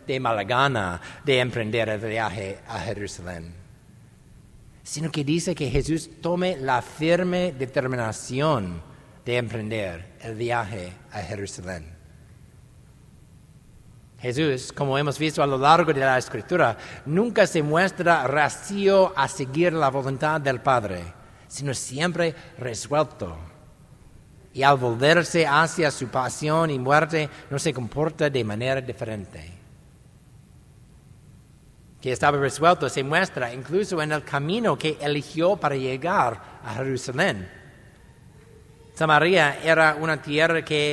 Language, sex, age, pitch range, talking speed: English, male, 60-79, 125-160 Hz, 120 wpm